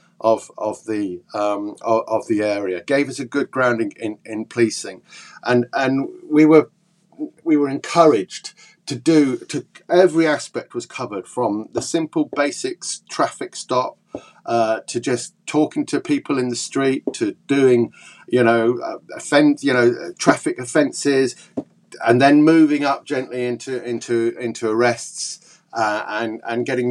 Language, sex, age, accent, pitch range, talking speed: English, male, 50-69, British, 120-170 Hz, 150 wpm